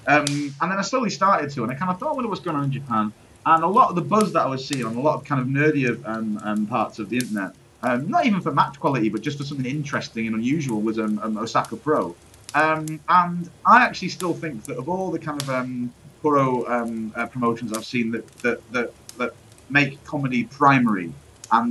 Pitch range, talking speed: 110-150 Hz, 230 wpm